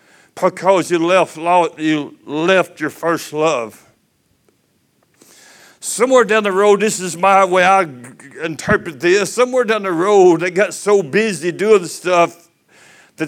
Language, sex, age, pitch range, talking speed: English, male, 60-79, 155-195 Hz, 140 wpm